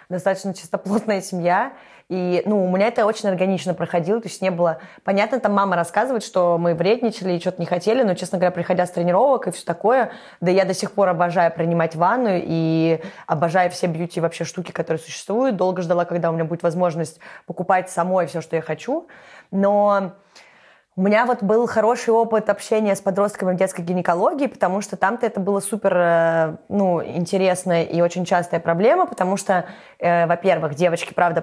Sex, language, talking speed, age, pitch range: female, Russian, 180 wpm, 20-39, 170-200 Hz